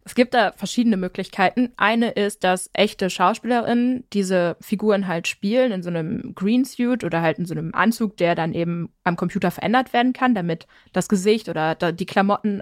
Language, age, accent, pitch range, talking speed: German, 20-39, German, 185-230 Hz, 180 wpm